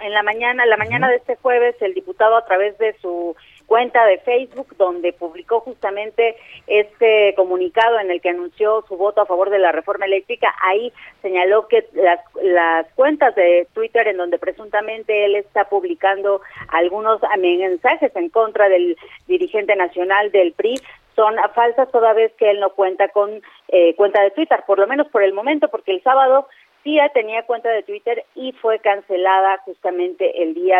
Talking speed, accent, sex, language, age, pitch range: 175 wpm, Mexican, female, Spanish, 40-59, 185-230 Hz